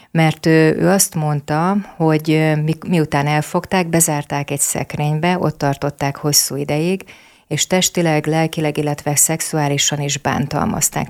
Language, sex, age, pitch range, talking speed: Hungarian, female, 30-49, 150-165 Hz, 115 wpm